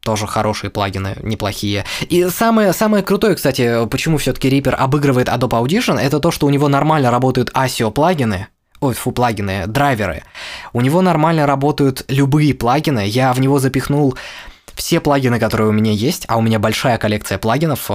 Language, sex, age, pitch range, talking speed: Russian, male, 20-39, 110-145 Hz, 165 wpm